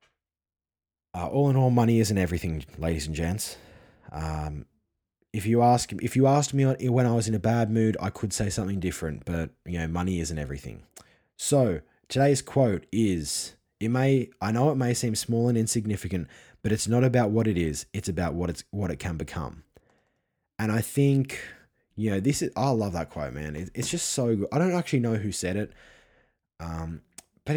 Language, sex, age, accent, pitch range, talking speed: English, male, 20-39, Australian, 85-120 Hz, 195 wpm